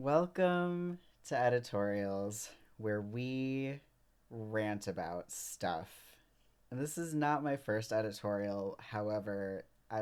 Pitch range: 110-165 Hz